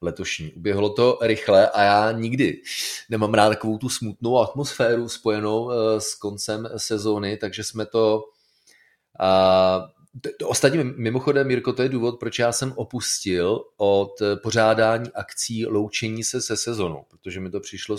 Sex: male